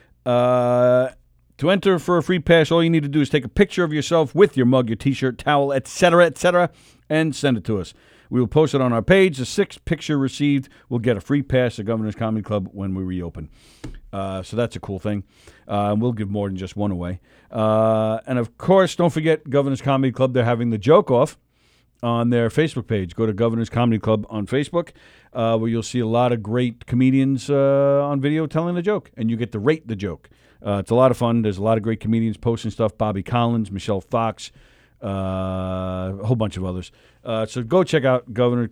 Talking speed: 225 wpm